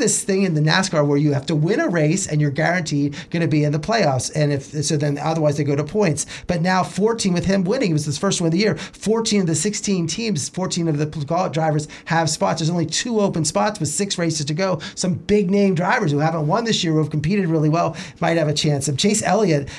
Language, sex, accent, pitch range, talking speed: English, male, American, 150-200 Hz, 260 wpm